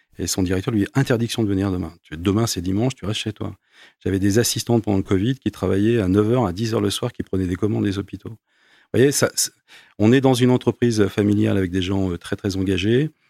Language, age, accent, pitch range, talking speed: French, 40-59, French, 95-110 Hz, 230 wpm